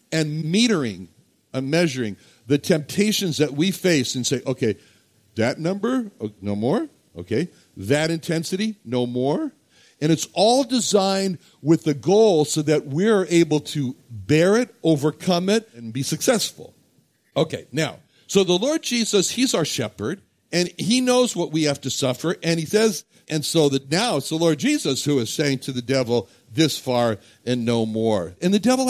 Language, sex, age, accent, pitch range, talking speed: English, male, 60-79, American, 125-185 Hz, 170 wpm